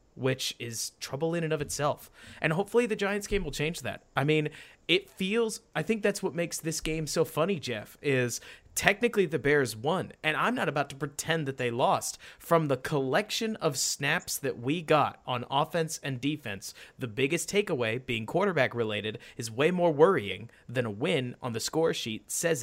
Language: English